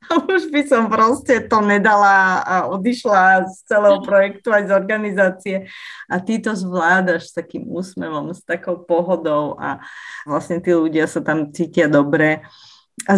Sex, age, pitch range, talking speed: female, 30-49, 150-190 Hz, 150 wpm